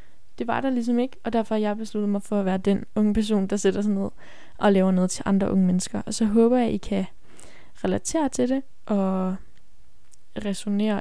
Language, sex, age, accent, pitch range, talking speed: Danish, female, 10-29, native, 200-225 Hz, 220 wpm